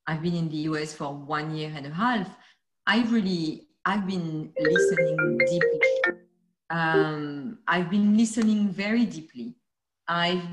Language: English